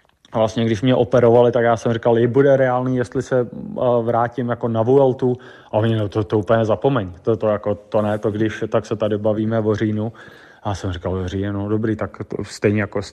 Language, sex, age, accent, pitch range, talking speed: Czech, male, 20-39, native, 110-125 Hz, 215 wpm